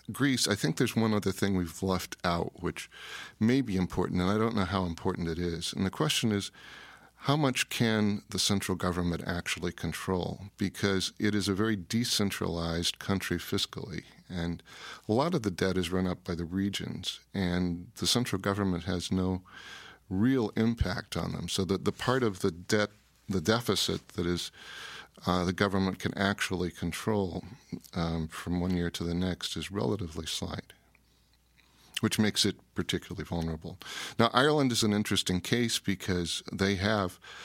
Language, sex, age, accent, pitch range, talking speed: English, male, 50-69, American, 90-105 Hz, 170 wpm